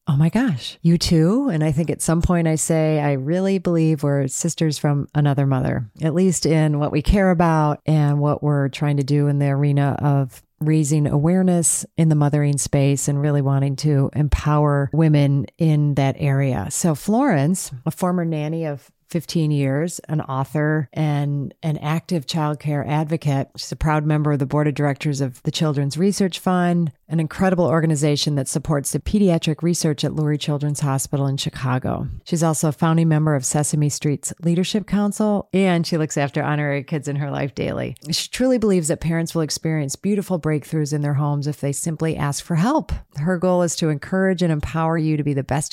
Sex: female